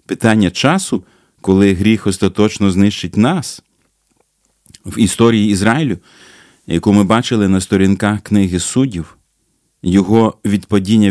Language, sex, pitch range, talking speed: Ukrainian, male, 90-110 Hz, 105 wpm